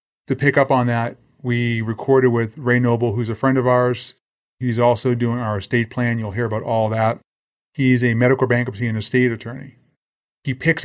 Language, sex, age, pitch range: English, male, 30-49, 115-135 Hz